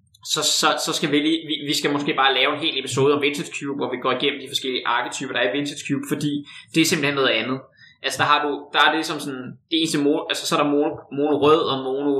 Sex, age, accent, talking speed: male, 20-39, native, 285 wpm